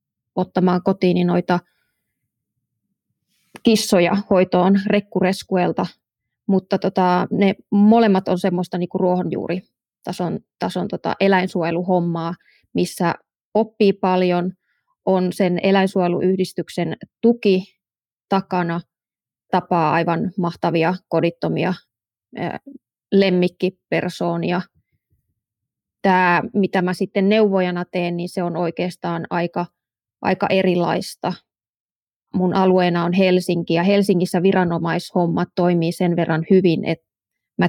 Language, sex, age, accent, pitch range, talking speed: Finnish, female, 20-39, native, 175-195 Hz, 90 wpm